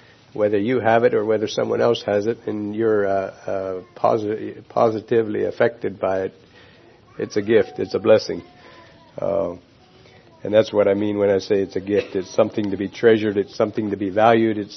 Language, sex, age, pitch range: English, male, 50-69, 105-120 Hz